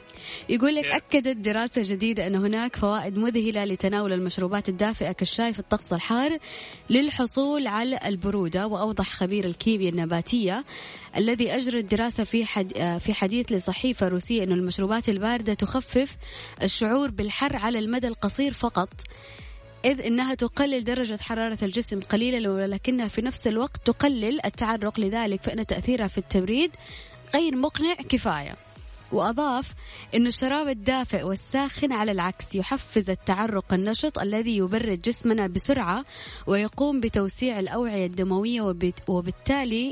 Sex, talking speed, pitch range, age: female, 125 wpm, 200-250 Hz, 20-39